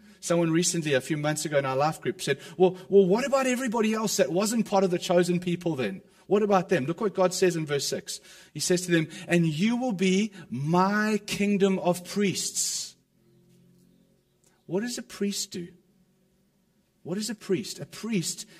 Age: 40-59